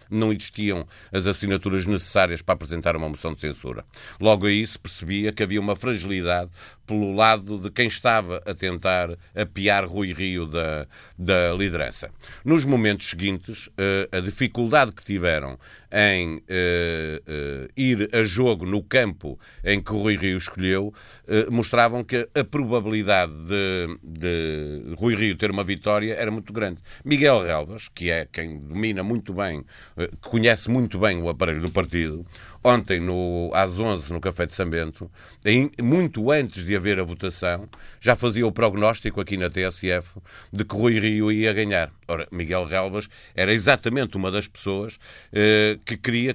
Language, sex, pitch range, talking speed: Portuguese, male, 90-110 Hz, 155 wpm